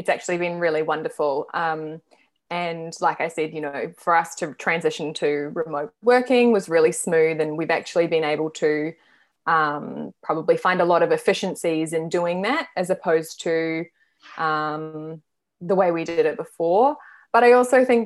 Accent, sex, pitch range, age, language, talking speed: Australian, female, 155-185 Hz, 20-39, English, 170 wpm